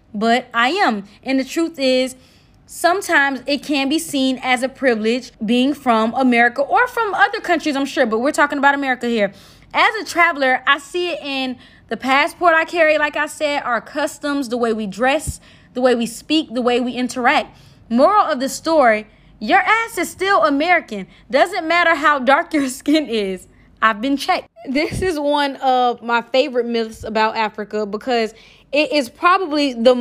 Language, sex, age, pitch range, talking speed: Amharic, female, 20-39, 235-305 Hz, 180 wpm